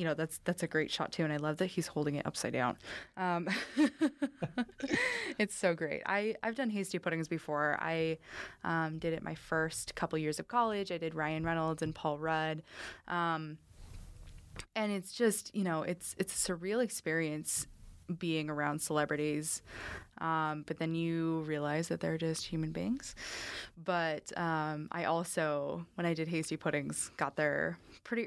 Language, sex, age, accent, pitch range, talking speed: English, female, 20-39, American, 155-185 Hz, 170 wpm